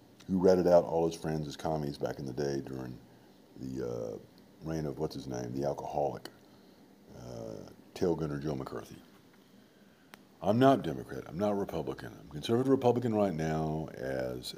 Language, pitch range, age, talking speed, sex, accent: English, 75-105 Hz, 50-69, 160 wpm, male, American